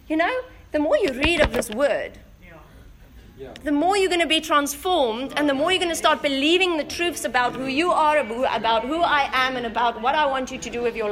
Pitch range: 230-315 Hz